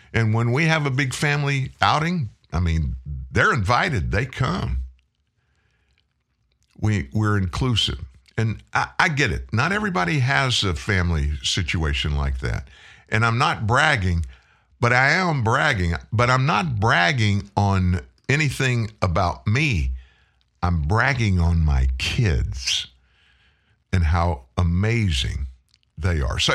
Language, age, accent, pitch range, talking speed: English, 50-69, American, 80-120 Hz, 130 wpm